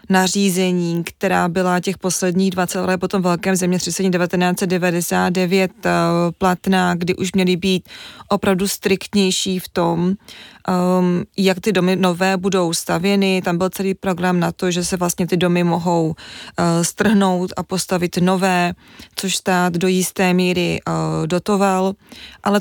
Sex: female